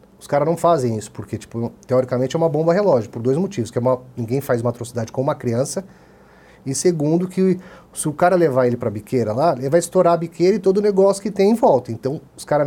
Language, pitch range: Portuguese, 120-160 Hz